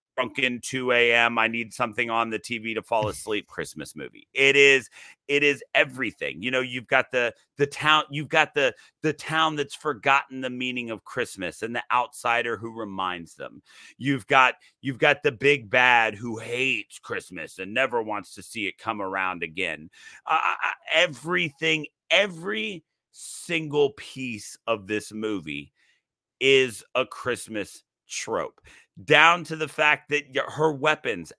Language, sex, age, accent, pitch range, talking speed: English, male, 40-59, American, 120-145 Hz, 155 wpm